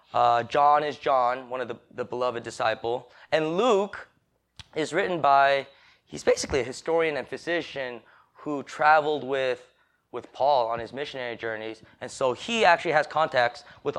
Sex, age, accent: male, 20-39, American